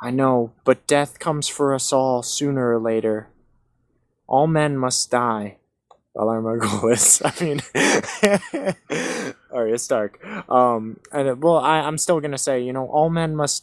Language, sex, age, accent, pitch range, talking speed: English, male, 20-39, American, 115-150 Hz, 160 wpm